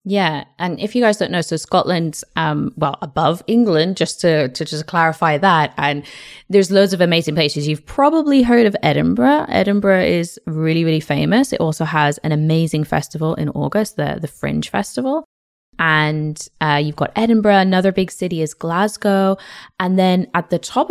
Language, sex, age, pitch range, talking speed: English, female, 20-39, 155-200 Hz, 180 wpm